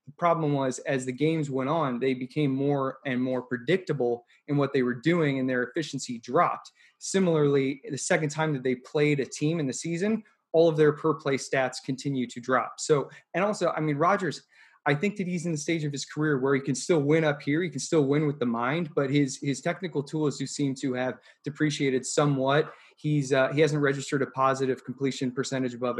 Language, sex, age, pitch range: English, male, 20-39, 130-155 Hz